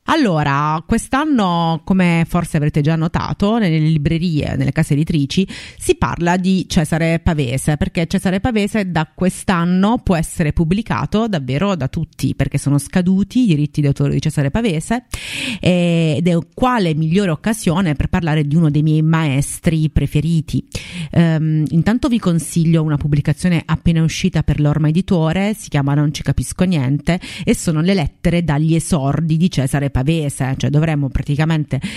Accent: native